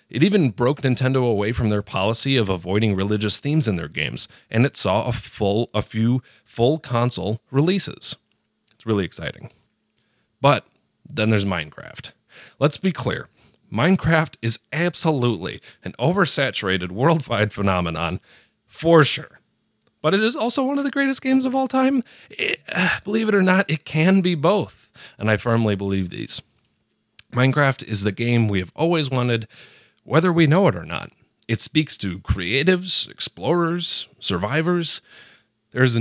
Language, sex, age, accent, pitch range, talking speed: English, male, 30-49, American, 105-155 Hz, 150 wpm